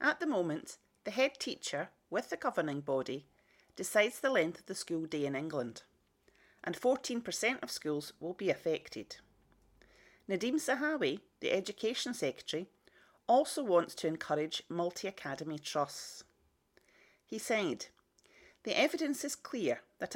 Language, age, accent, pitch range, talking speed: English, 40-59, British, 165-255 Hz, 130 wpm